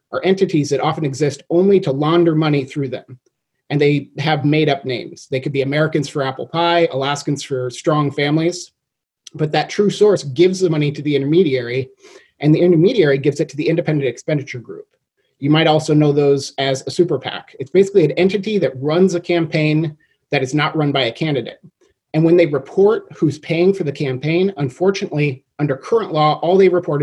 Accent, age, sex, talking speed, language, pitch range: American, 30-49, male, 195 wpm, English, 140-180 Hz